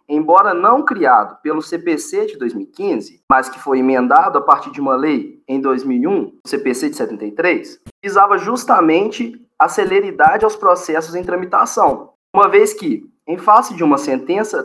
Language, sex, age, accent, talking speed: Portuguese, male, 20-39, Brazilian, 155 wpm